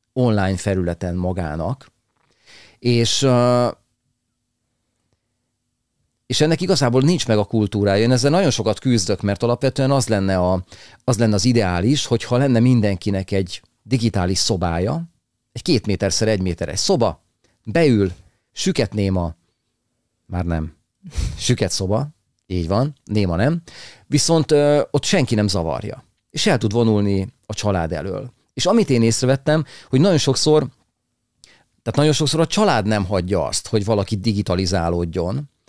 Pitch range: 100-130 Hz